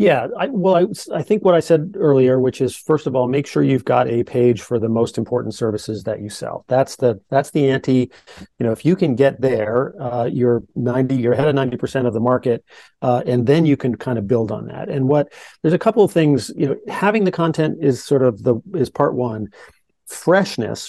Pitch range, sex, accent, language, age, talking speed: 125-145 Hz, male, American, English, 40-59, 235 wpm